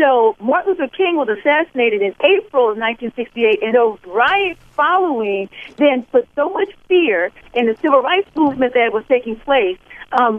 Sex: female